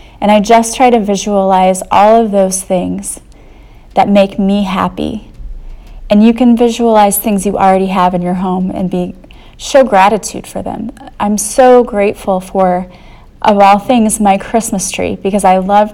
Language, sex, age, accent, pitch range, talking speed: English, female, 30-49, American, 185-220 Hz, 165 wpm